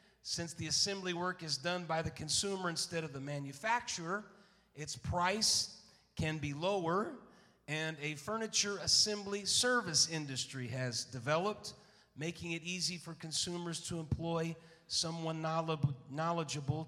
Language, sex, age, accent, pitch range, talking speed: English, male, 40-59, American, 145-180 Hz, 125 wpm